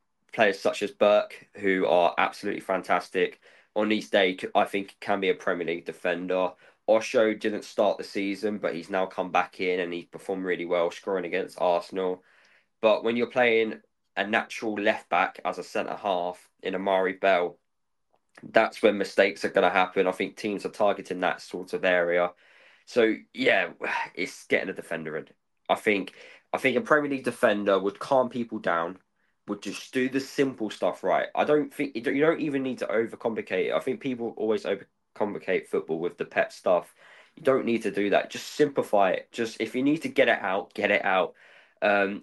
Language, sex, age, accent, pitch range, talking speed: English, male, 10-29, British, 95-135 Hz, 190 wpm